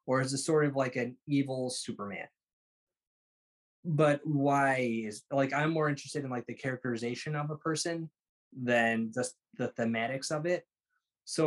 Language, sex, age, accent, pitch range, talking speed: English, male, 20-39, American, 120-150 Hz, 155 wpm